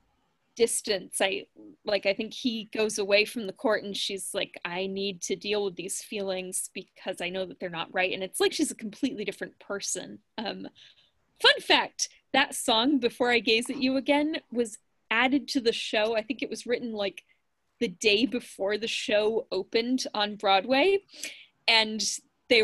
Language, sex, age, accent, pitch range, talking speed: English, female, 10-29, American, 205-290 Hz, 180 wpm